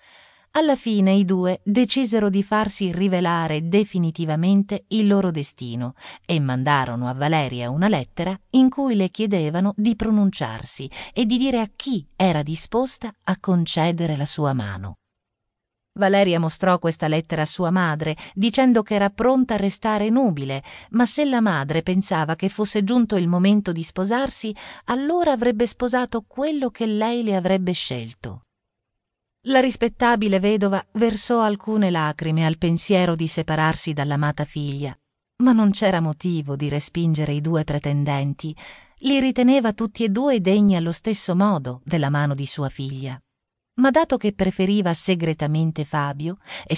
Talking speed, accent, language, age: 145 wpm, native, Italian, 40-59